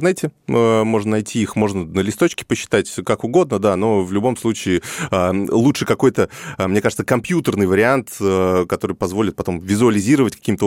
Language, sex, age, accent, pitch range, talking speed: Russian, male, 20-39, native, 90-115 Hz, 145 wpm